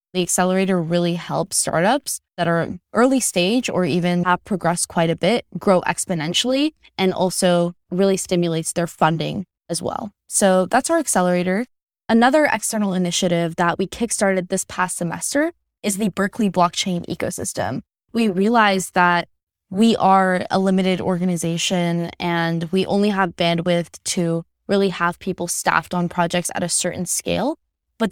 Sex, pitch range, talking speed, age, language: female, 175-200 Hz, 145 wpm, 10-29, English